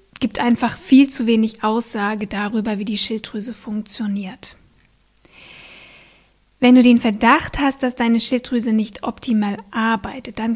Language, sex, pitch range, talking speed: German, female, 215-250 Hz, 130 wpm